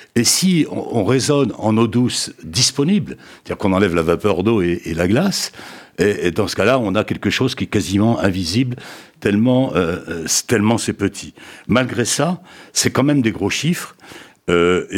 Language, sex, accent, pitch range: French, male, French, 100-140 Hz